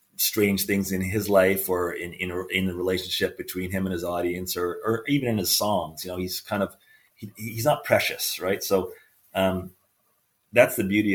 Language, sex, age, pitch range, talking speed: English, male, 30-49, 90-105 Hz, 200 wpm